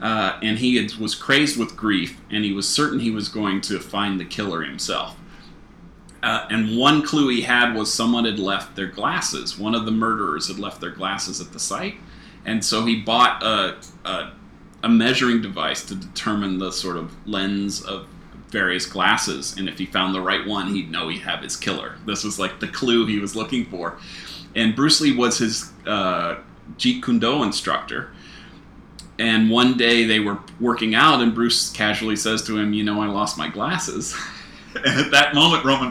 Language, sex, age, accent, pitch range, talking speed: English, male, 30-49, American, 100-120 Hz, 195 wpm